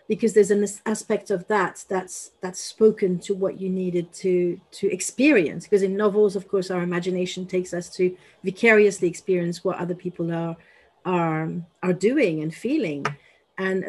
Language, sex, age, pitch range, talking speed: English, female, 40-59, 175-210 Hz, 165 wpm